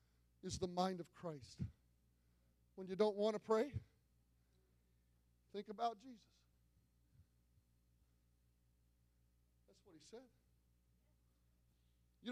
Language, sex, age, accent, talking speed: English, male, 40-59, American, 95 wpm